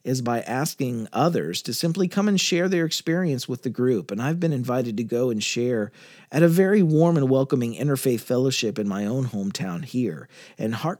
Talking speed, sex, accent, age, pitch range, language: 200 wpm, male, American, 40-59, 115-165 Hz, English